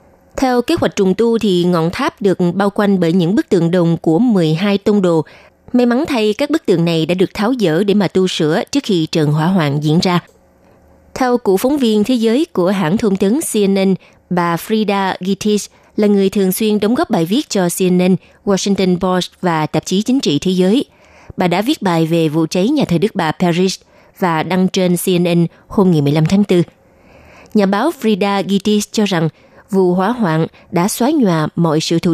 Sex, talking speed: female, 205 wpm